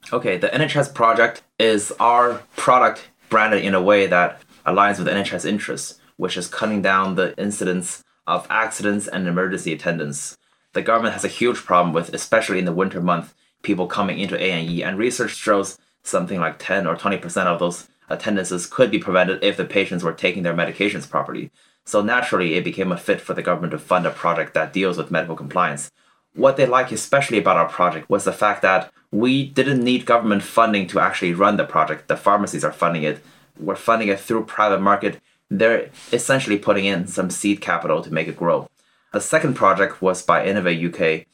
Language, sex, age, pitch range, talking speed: English, male, 20-39, 85-110 Hz, 195 wpm